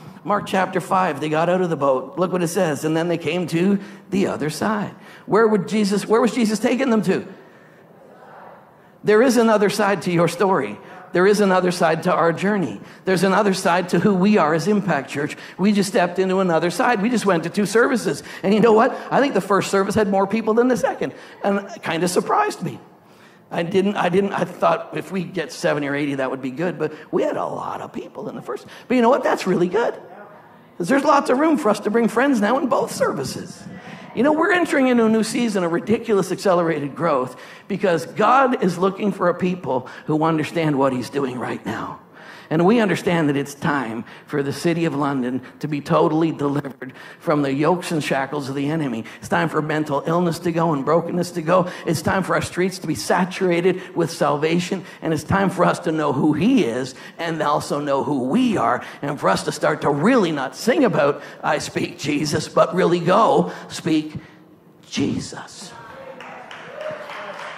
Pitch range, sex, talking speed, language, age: 160-205 Hz, male, 210 wpm, English, 50-69